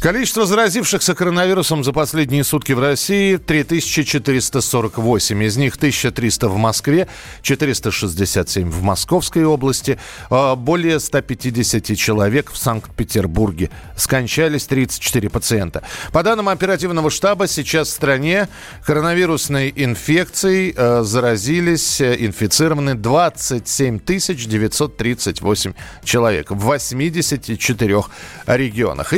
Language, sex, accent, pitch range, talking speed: Russian, male, native, 120-170 Hz, 90 wpm